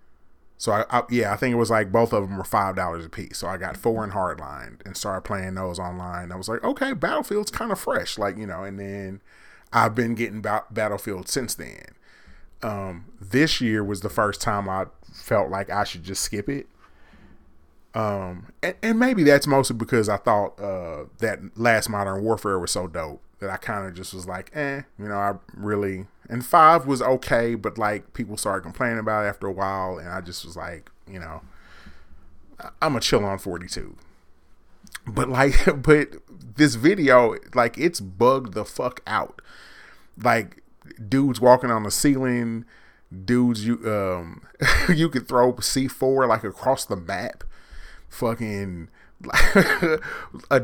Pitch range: 95-125 Hz